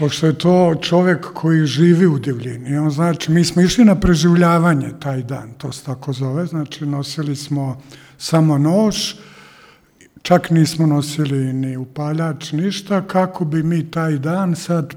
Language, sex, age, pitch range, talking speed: Croatian, male, 50-69, 140-170 Hz, 150 wpm